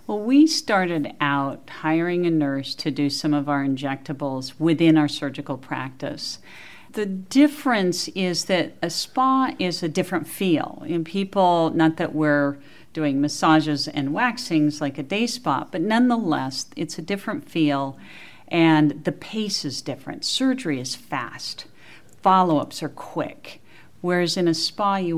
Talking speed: 150 wpm